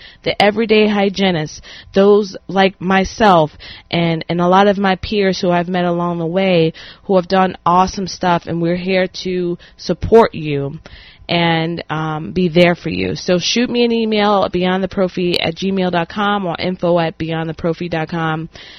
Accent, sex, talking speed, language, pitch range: American, female, 155 wpm, English, 160-195 Hz